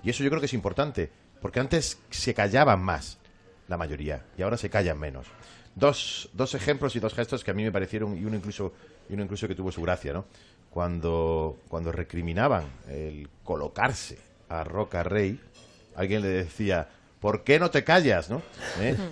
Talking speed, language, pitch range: 180 wpm, Spanish, 90-120 Hz